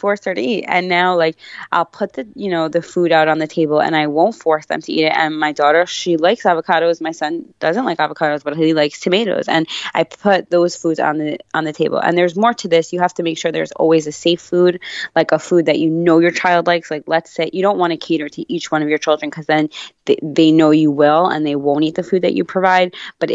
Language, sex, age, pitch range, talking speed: English, female, 20-39, 155-185 Hz, 270 wpm